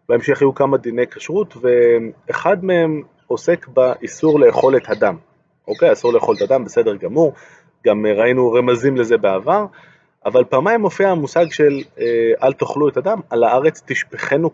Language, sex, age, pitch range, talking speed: Hebrew, male, 30-49, 120-170 Hz, 150 wpm